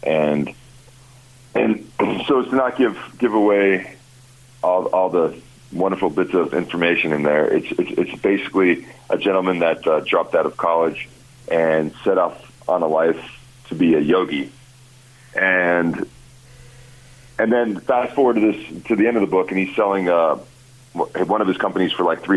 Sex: male